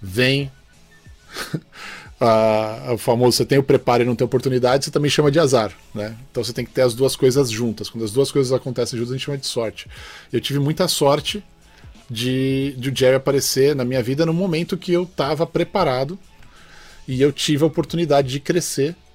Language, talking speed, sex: Portuguese, 195 wpm, male